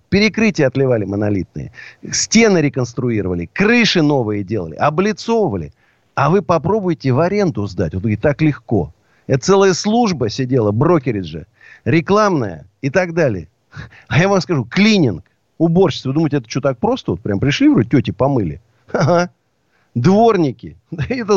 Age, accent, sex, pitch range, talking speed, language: 50-69, native, male, 110-170 Hz, 135 wpm, Russian